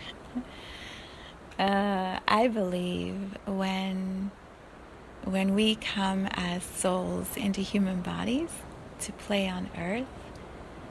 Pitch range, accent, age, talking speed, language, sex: 175-200 Hz, American, 30-49, 90 wpm, English, female